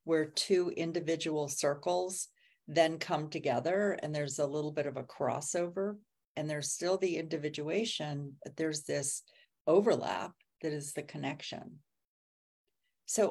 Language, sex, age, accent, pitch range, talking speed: English, female, 40-59, American, 145-170 Hz, 130 wpm